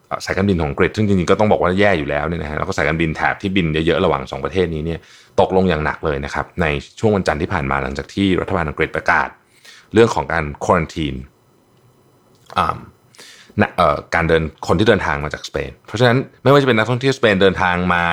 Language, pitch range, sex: Thai, 80-115 Hz, male